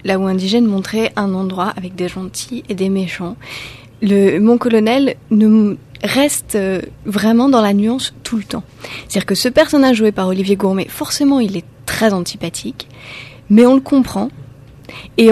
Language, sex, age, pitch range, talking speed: French, female, 30-49, 190-245 Hz, 170 wpm